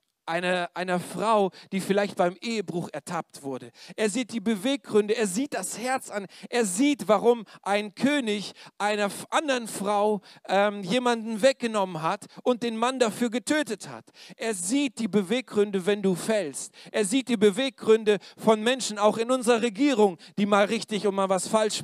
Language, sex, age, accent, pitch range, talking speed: German, male, 40-59, German, 180-235 Hz, 165 wpm